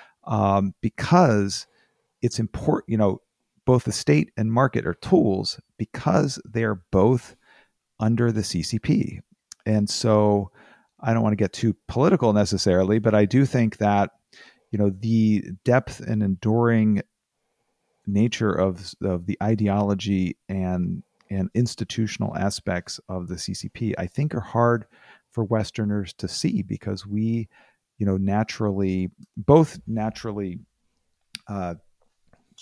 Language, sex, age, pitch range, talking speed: English, male, 40-59, 95-115 Hz, 125 wpm